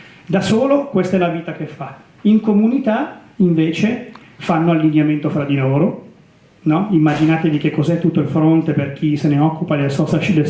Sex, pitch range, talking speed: male, 155-190 Hz, 165 wpm